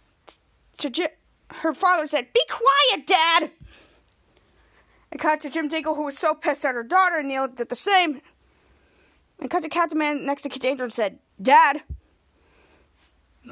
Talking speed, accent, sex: 170 wpm, American, female